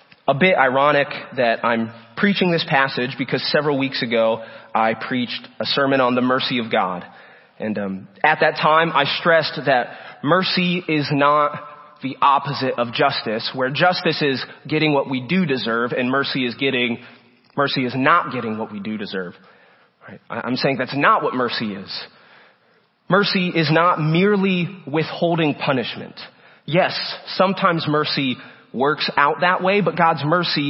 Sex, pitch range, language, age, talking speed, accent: male, 130-170 Hz, English, 30-49, 155 wpm, American